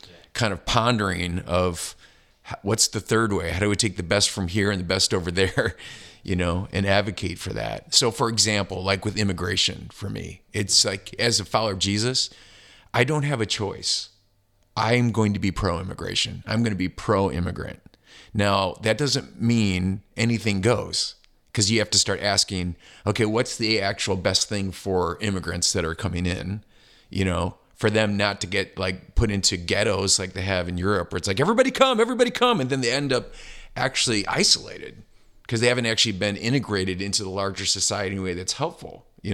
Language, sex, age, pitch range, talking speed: English, male, 40-59, 95-110 Hz, 195 wpm